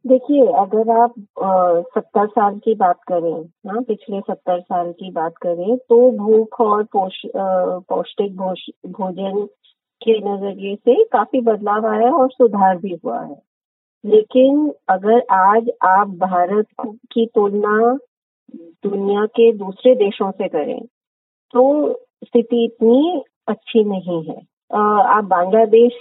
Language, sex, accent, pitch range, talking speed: Hindi, female, native, 200-245 Hz, 130 wpm